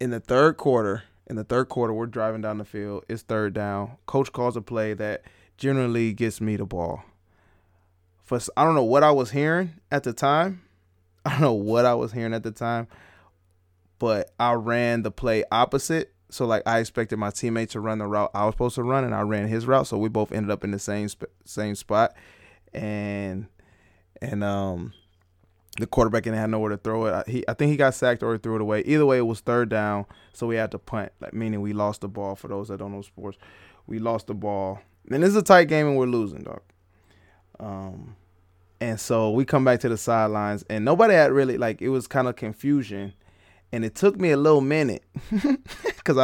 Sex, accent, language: male, American, English